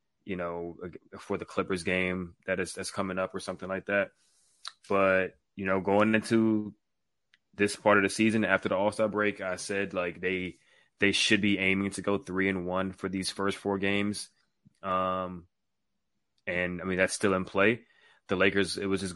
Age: 20-39